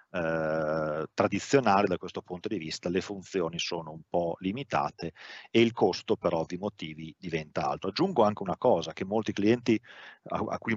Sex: male